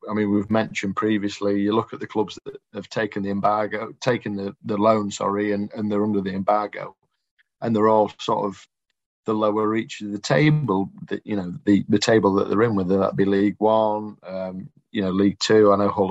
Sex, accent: male, British